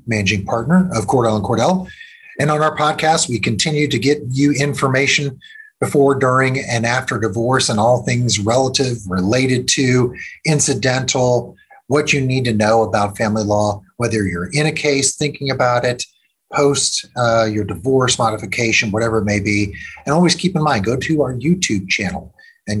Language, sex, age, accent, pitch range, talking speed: English, male, 30-49, American, 110-140 Hz, 165 wpm